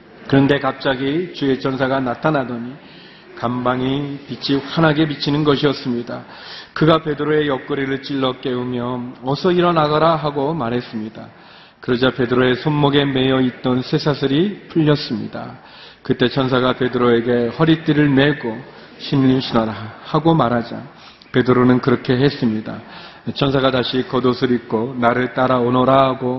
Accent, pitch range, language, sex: native, 125-150 Hz, Korean, male